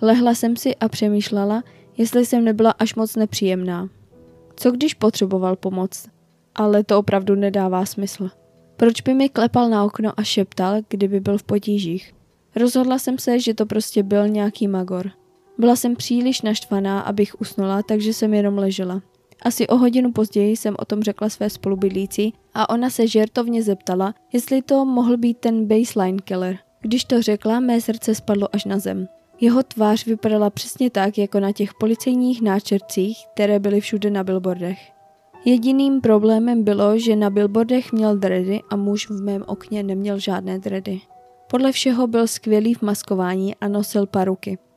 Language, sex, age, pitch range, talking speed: Czech, female, 20-39, 195-230 Hz, 165 wpm